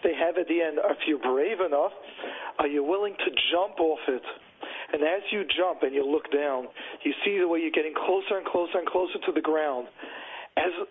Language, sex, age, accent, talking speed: English, male, 40-59, American, 215 wpm